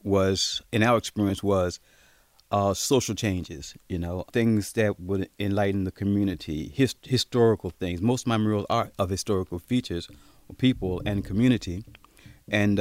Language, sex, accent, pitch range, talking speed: English, male, American, 100-125 Hz, 145 wpm